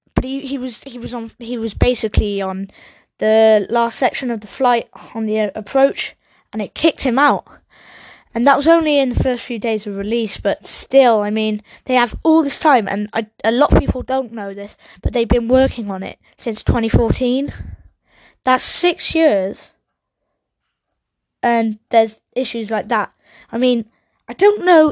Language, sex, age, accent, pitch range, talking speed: English, female, 20-39, British, 220-270 Hz, 180 wpm